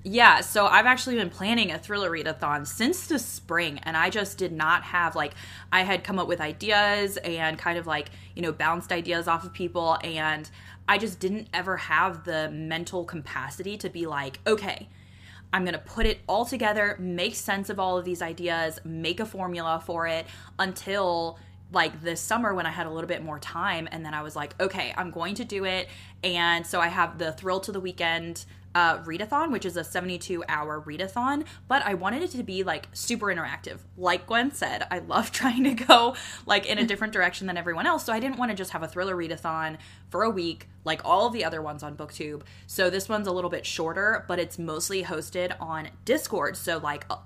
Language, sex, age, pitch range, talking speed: English, female, 20-39, 155-200 Hz, 215 wpm